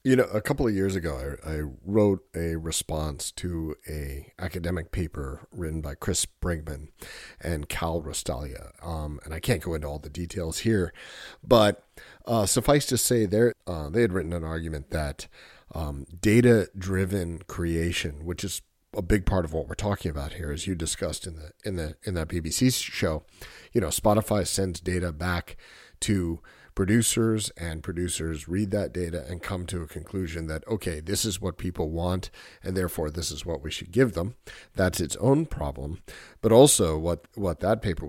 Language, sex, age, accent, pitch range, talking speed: English, male, 40-59, American, 80-105 Hz, 185 wpm